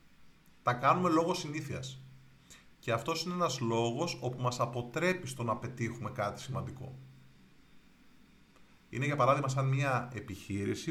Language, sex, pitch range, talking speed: Greek, male, 120-140 Hz, 125 wpm